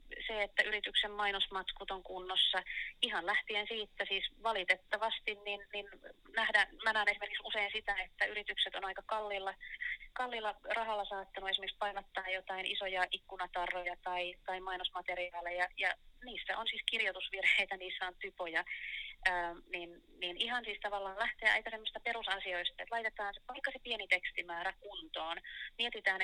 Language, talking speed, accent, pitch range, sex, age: Finnish, 135 wpm, native, 185-215 Hz, female, 30-49